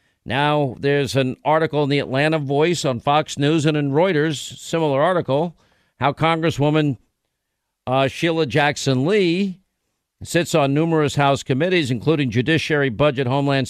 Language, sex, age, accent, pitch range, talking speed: English, male, 50-69, American, 140-170 Hz, 135 wpm